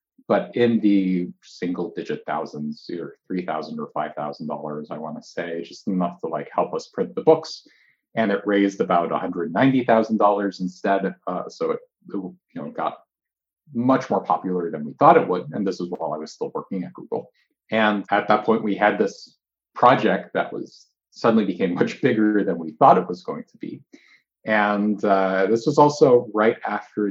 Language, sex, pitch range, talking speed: English, male, 95-120 Hz, 175 wpm